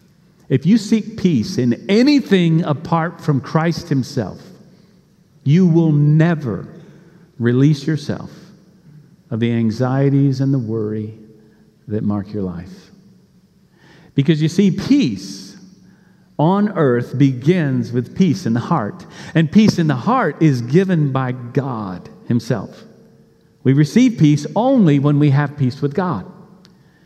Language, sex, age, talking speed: English, male, 50-69, 125 wpm